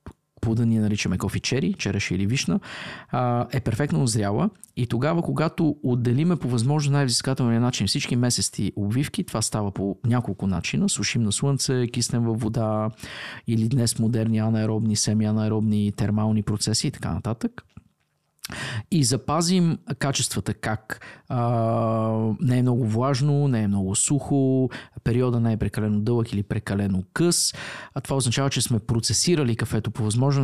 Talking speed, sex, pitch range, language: 140 wpm, male, 110-140 Hz, Bulgarian